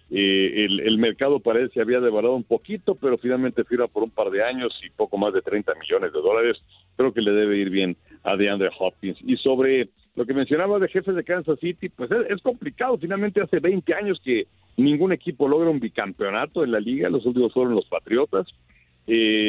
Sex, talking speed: male, 210 wpm